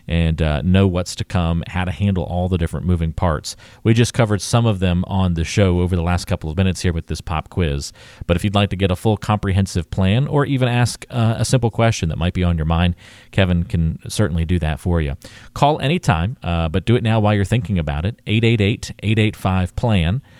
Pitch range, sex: 90-115 Hz, male